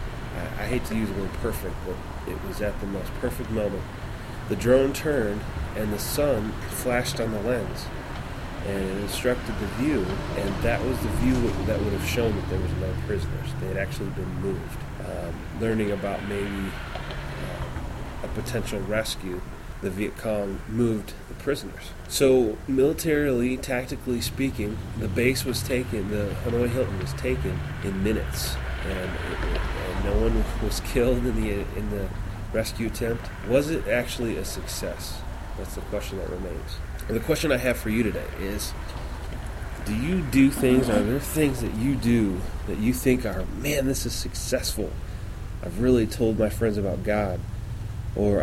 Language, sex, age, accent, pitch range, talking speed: English, male, 30-49, American, 95-120 Hz, 165 wpm